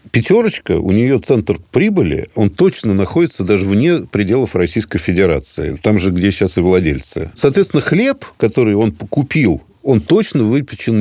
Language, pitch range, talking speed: Russian, 95-145 Hz, 145 wpm